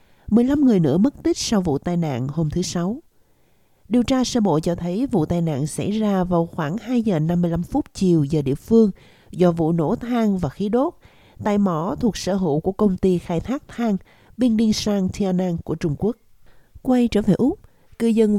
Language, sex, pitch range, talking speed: Vietnamese, female, 170-225 Hz, 210 wpm